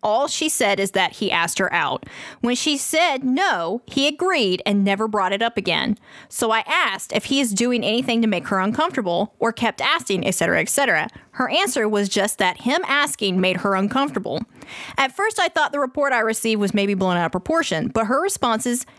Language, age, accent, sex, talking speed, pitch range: English, 20-39, American, female, 205 wpm, 200-270 Hz